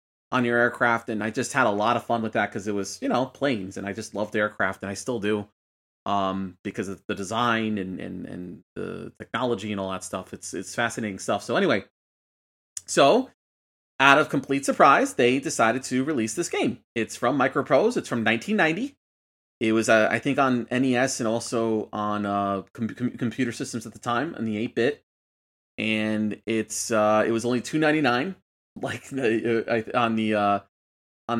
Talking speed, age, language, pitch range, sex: 195 wpm, 30-49, English, 105-130 Hz, male